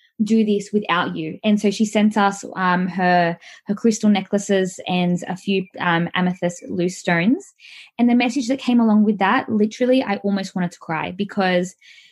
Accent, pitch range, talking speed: Australian, 190-225 Hz, 180 wpm